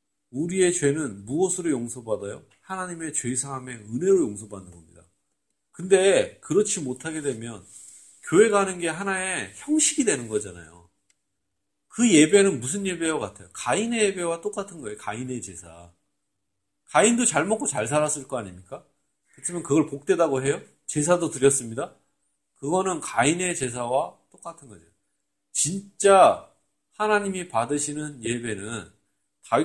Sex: male